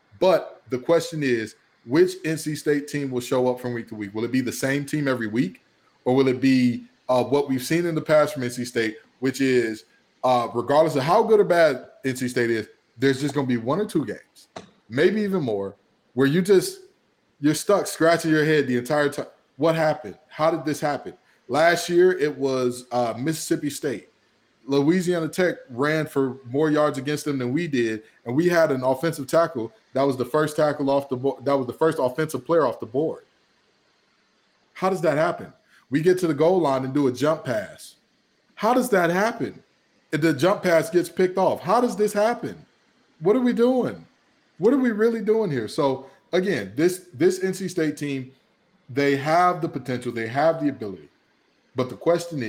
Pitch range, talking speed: 125-170 Hz, 200 wpm